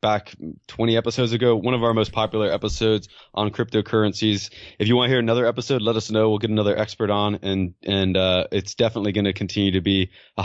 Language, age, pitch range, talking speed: English, 20-39, 100-115 Hz, 220 wpm